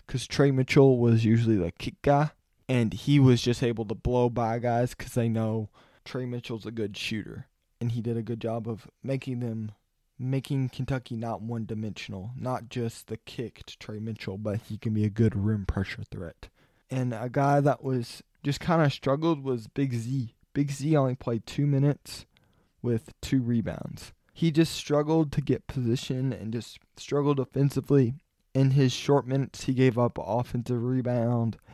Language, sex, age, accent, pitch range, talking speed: English, male, 20-39, American, 110-135 Hz, 180 wpm